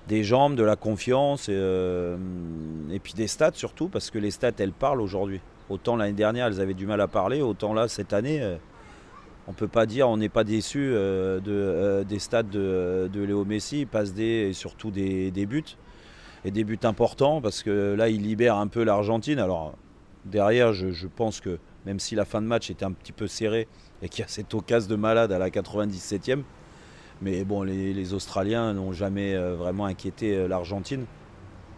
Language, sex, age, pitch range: French, male, 30-49, 95-115 Hz